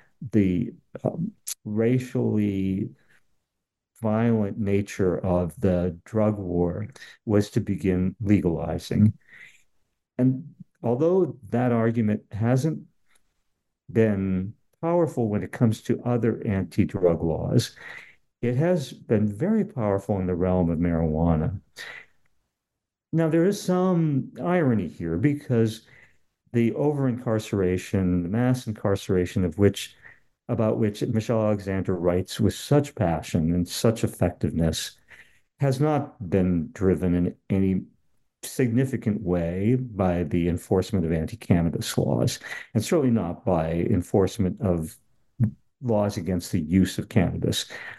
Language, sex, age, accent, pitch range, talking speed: English, male, 50-69, American, 95-120 Hz, 110 wpm